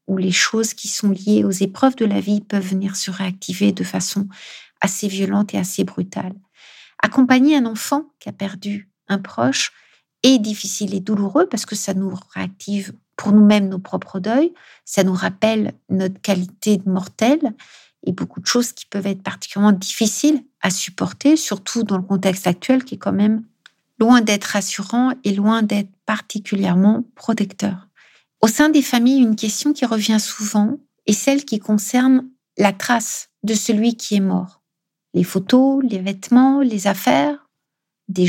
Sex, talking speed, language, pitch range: female, 165 wpm, French, 195-245 Hz